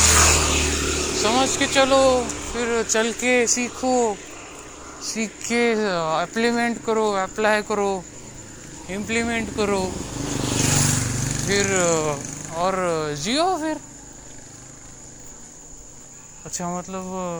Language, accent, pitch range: Marathi, native, 145-235 Hz